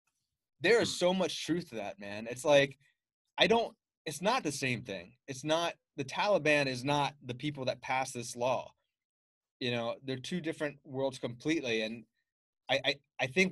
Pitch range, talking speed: 125-165 Hz, 180 wpm